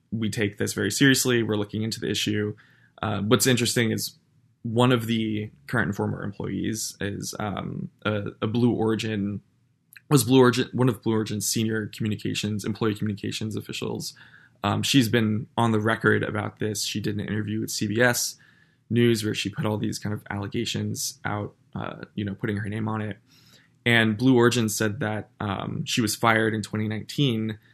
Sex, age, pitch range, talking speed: male, 20-39, 105-125 Hz, 175 wpm